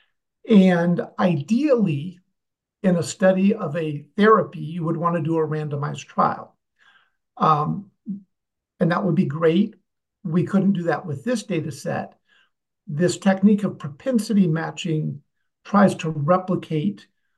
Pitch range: 165-200 Hz